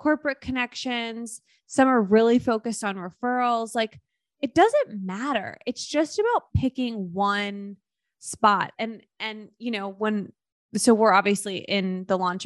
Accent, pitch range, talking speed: American, 195-250 Hz, 140 wpm